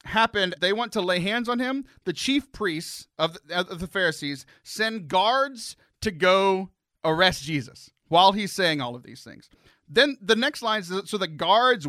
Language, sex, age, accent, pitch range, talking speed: English, male, 30-49, American, 160-235 Hz, 180 wpm